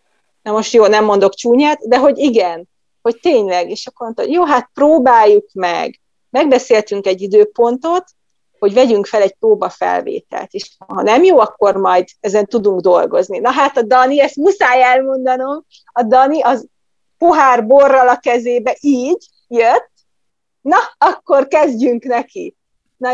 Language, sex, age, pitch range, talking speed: Hungarian, female, 30-49, 230-295 Hz, 145 wpm